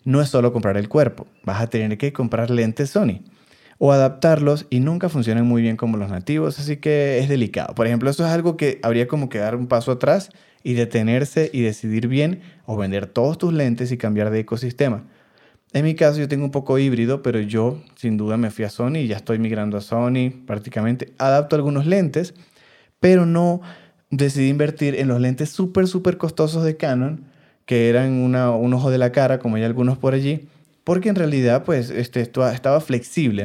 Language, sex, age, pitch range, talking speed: Spanish, male, 20-39, 120-150 Hz, 205 wpm